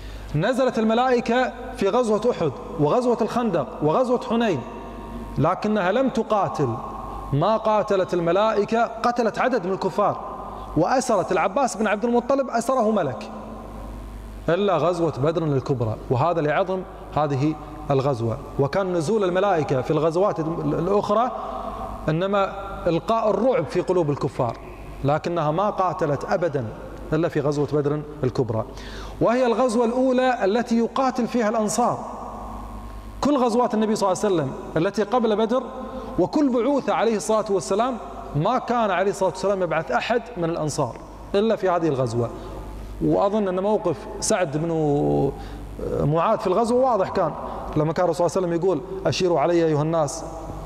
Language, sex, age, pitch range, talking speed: Arabic, male, 30-49, 150-225 Hz, 130 wpm